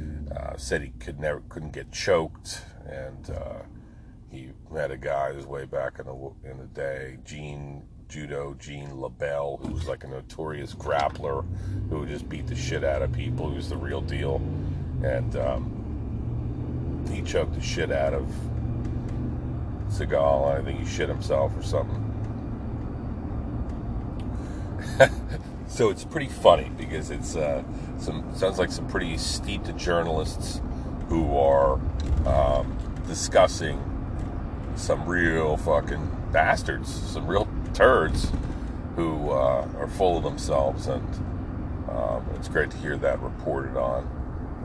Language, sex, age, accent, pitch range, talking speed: English, male, 40-59, American, 70-100 Hz, 135 wpm